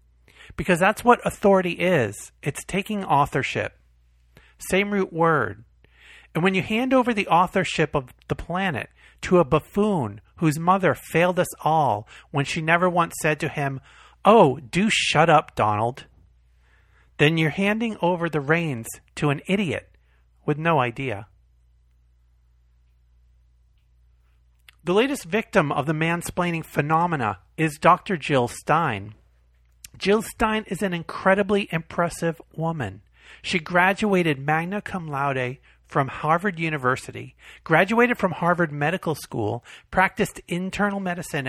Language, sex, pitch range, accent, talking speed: English, male, 120-180 Hz, American, 125 wpm